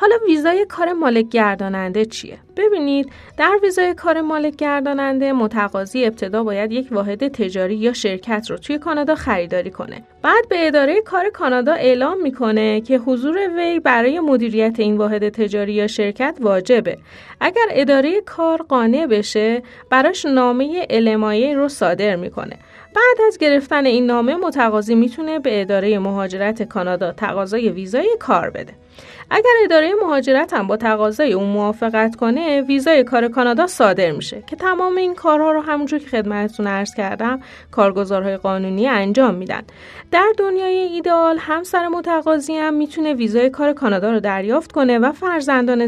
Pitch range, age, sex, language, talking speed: 215-310 Hz, 30-49, female, Persian, 145 wpm